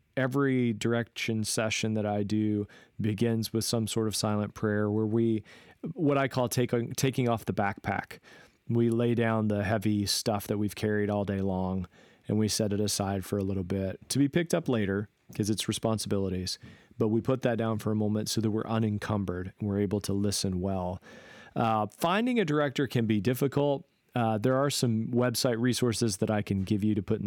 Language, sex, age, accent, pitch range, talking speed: English, male, 40-59, American, 100-120 Hz, 200 wpm